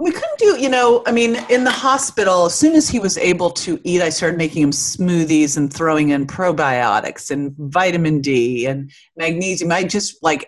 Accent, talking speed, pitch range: American, 200 wpm, 140-175 Hz